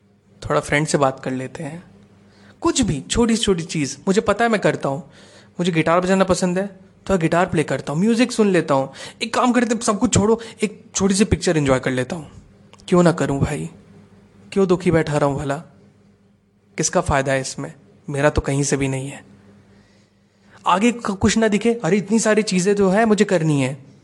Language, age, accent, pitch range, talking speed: Hindi, 20-39, native, 100-170 Hz, 205 wpm